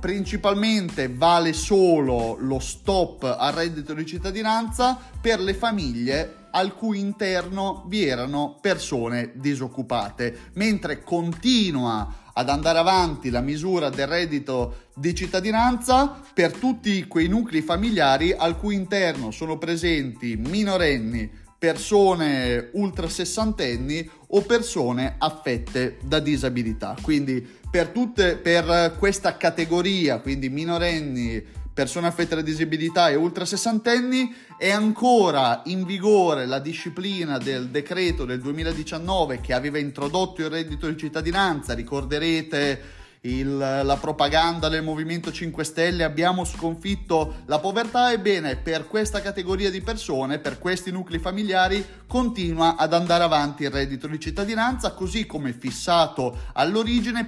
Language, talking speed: Italian, 120 wpm